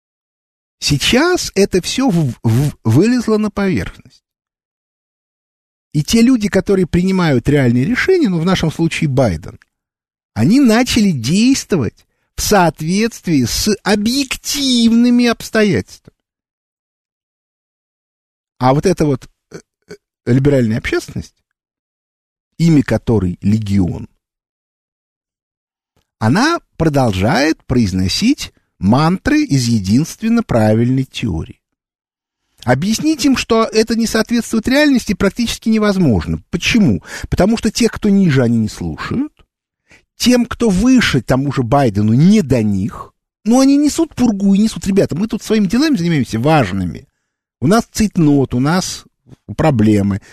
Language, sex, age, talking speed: Russian, male, 50-69, 110 wpm